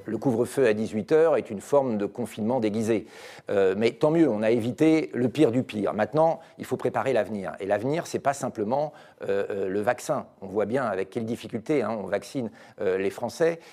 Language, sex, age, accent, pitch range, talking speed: French, male, 40-59, French, 120-165 Hz, 210 wpm